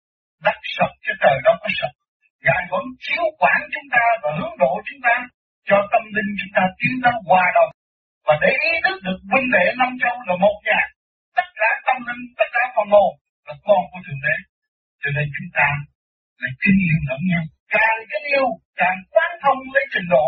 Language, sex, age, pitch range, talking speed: Vietnamese, male, 60-79, 175-275 Hz, 210 wpm